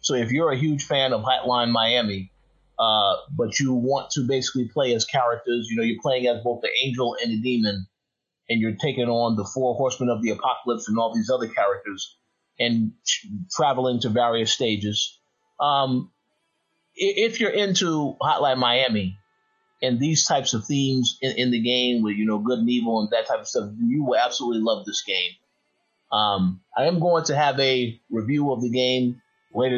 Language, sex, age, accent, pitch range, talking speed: English, male, 30-49, American, 115-145 Hz, 185 wpm